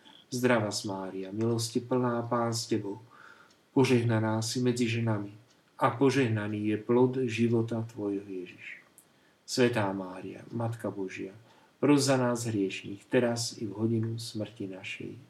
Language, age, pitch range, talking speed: Slovak, 50-69, 105-130 Hz, 125 wpm